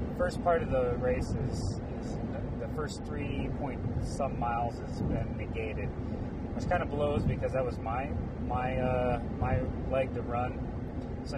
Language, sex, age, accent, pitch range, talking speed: English, male, 30-49, American, 115-130 Hz, 170 wpm